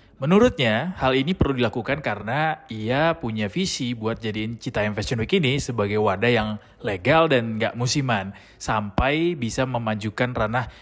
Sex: male